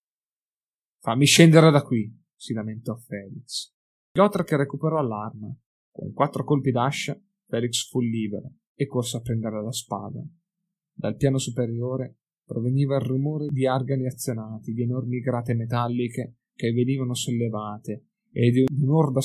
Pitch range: 115-140 Hz